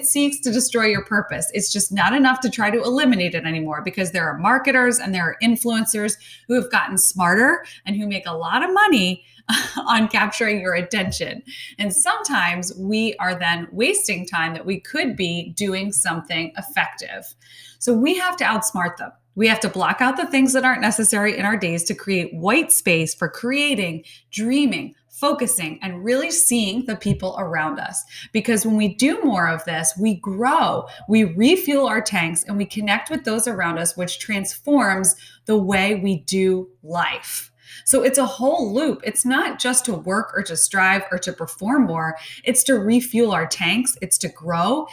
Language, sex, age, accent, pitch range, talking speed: English, female, 20-39, American, 180-245 Hz, 185 wpm